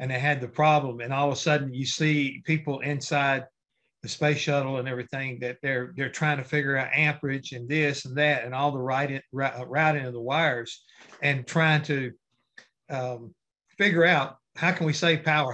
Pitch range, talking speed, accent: 135-165 Hz, 200 wpm, American